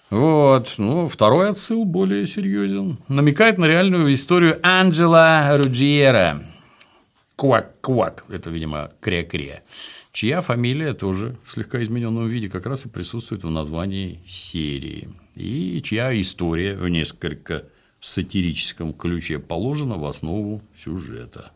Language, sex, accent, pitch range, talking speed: Russian, male, native, 85-140 Hz, 115 wpm